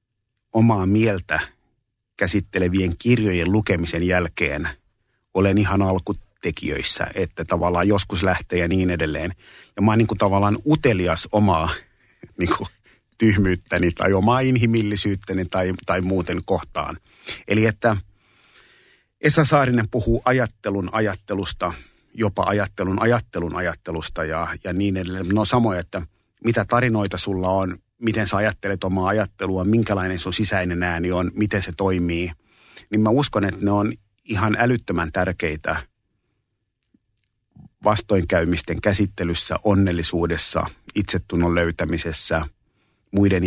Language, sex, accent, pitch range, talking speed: Finnish, male, native, 90-105 Hz, 115 wpm